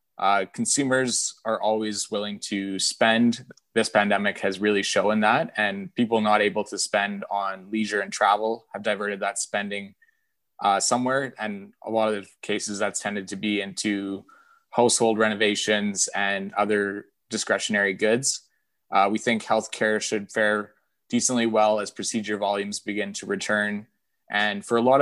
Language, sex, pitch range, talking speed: English, male, 100-115 Hz, 150 wpm